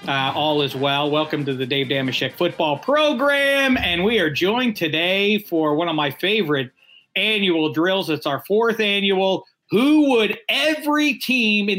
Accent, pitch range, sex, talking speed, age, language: American, 145-190 Hz, male, 165 wpm, 40-59, English